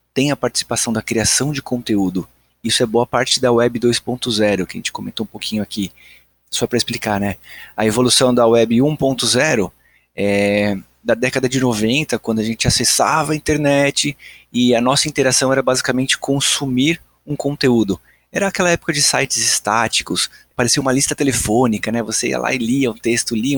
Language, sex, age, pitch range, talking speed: Portuguese, male, 20-39, 115-135 Hz, 175 wpm